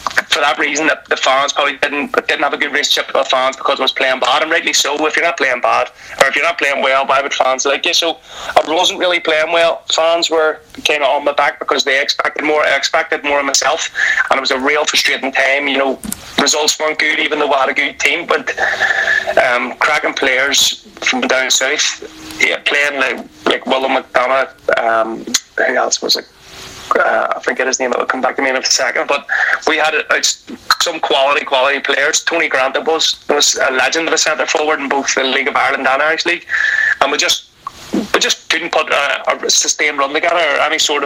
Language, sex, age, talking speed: English, male, 30-49, 225 wpm